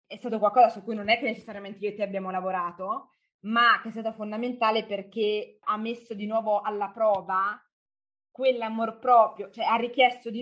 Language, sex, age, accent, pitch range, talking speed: Italian, female, 20-39, native, 200-230 Hz, 185 wpm